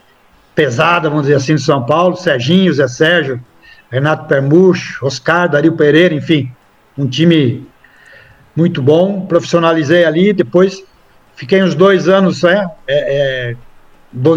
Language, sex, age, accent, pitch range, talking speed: Portuguese, male, 60-79, Brazilian, 155-180 Hz, 130 wpm